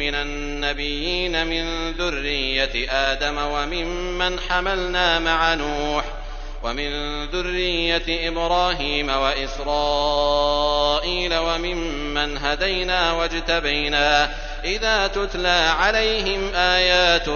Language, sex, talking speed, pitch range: Arabic, male, 70 wpm, 145-180 Hz